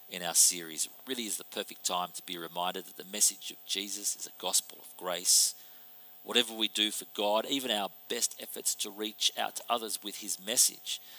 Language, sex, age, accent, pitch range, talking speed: English, male, 40-59, Australian, 90-110 Hz, 210 wpm